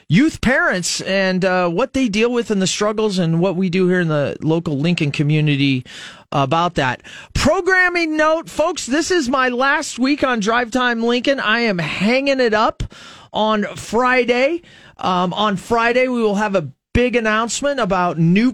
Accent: American